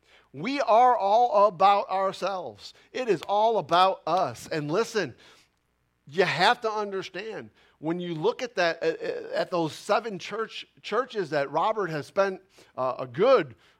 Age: 50-69